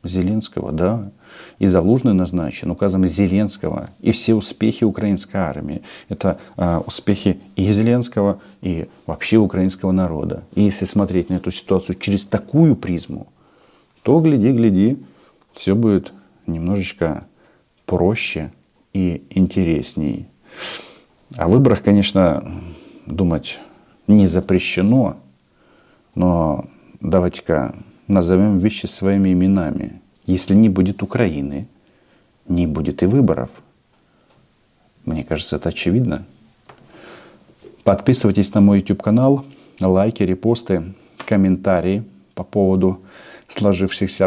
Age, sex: 40-59, male